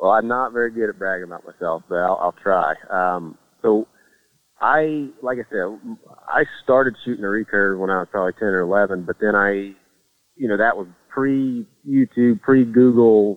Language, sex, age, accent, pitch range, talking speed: English, male, 30-49, American, 95-115 Hz, 180 wpm